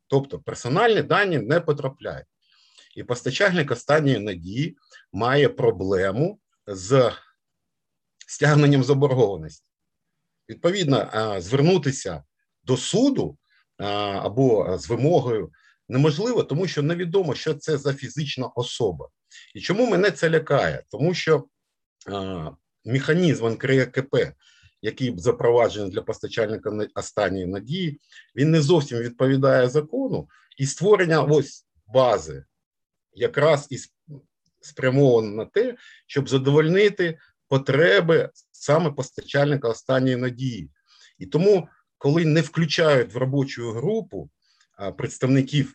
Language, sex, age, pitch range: Ukrainian, male, 50-69, 125-160 Hz